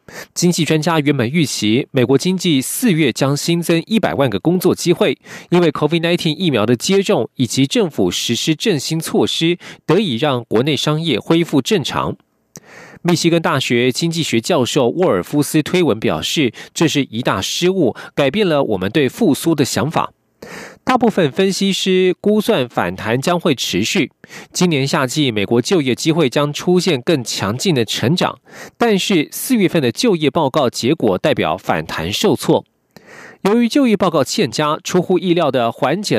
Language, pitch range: Russian, 140-185 Hz